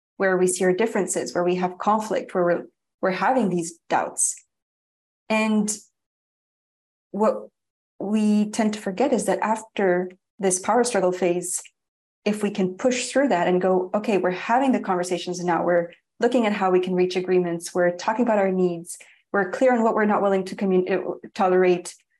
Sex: female